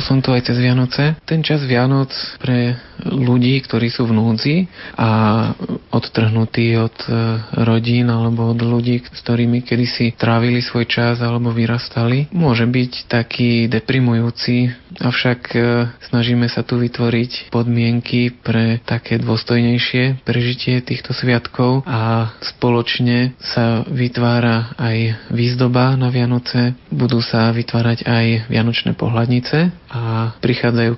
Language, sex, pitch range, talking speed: Slovak, male, 115-125 Hz, 120 wpm